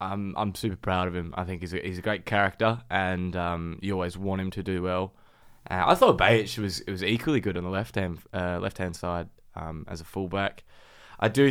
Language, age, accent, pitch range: English, 20-39, Australian, 90-110 Hz